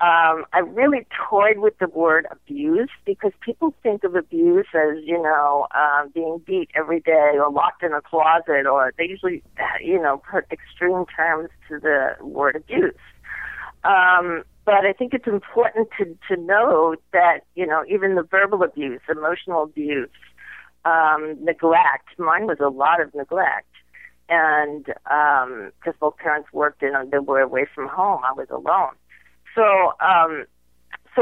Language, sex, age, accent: English, female, 50-69, American